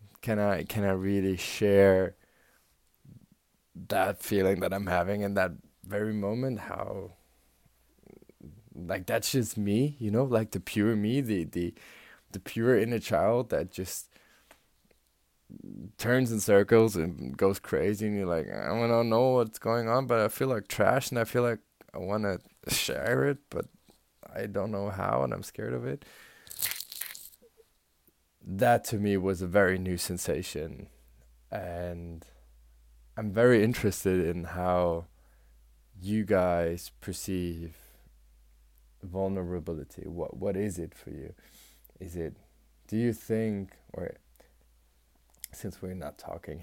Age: 20-39